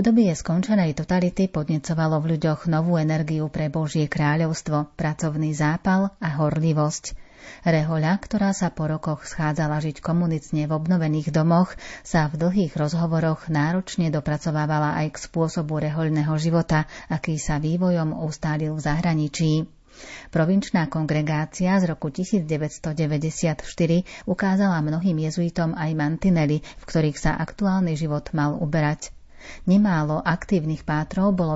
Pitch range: 155-170 Hz